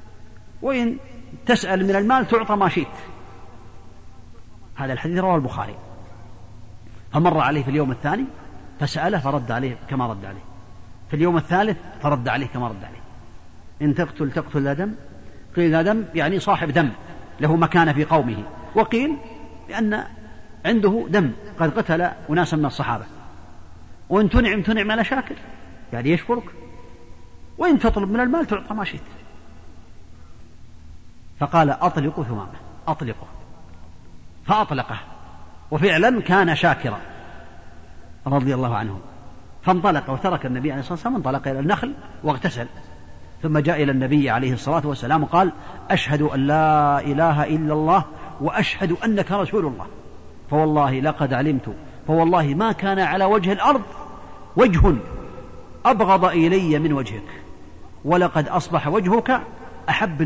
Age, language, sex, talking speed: 40-59, Arabic, male, 125 wpm